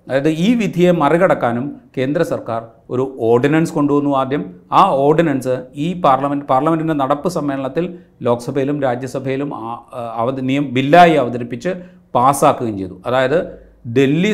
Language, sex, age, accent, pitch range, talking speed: Malayalam, male, 40-59, native, 130-170 Hz, 115 wpm